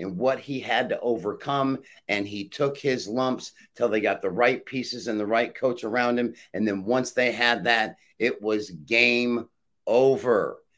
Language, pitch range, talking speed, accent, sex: English, 120-140 Hz, 185 wpm, American, male